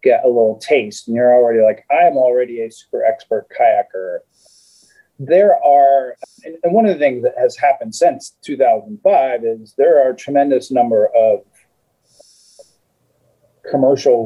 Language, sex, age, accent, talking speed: English, male, 30-49, American, 145 wpm